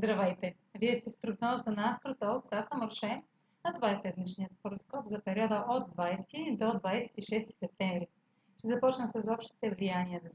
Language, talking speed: Bulgarian, 140 wpm